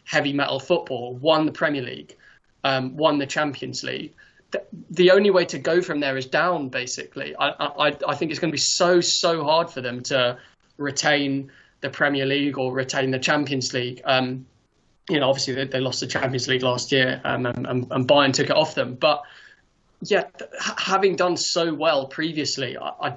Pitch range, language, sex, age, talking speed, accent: 130-155 Hz, English, male, 20-39, 195 wpm, British